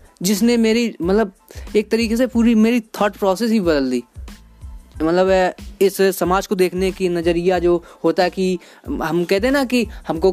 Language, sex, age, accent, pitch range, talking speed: Hindi, female, 20-39, native, 175-225 Hz, 170 wpm